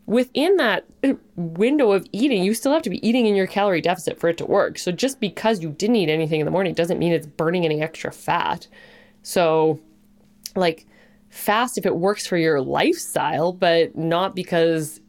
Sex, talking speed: female, 190 wpm